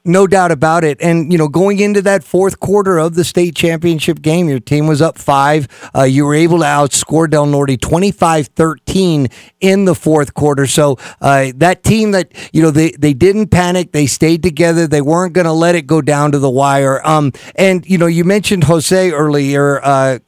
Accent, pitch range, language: American, 145-185 Hz, English